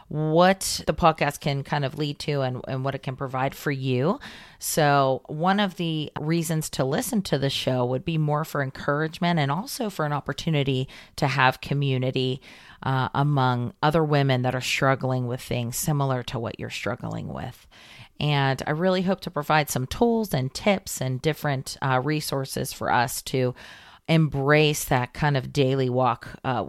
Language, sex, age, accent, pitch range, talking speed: English, female, 40-59, American, 135-170 Hz, 175 wpm